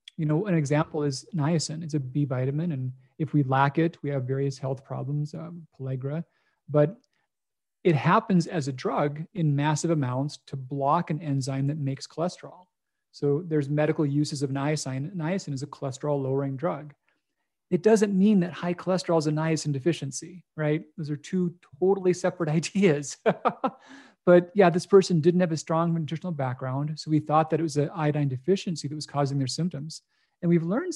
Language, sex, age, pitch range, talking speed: English, male, 40-59, 140-170 Hz, 180 wpm